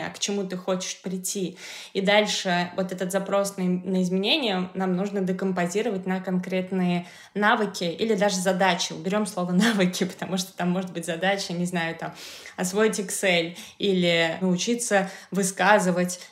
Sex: female